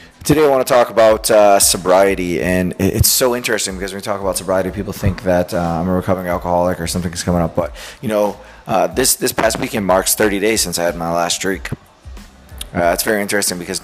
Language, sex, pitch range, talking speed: English, male, 85-105 Hz, 230 wpm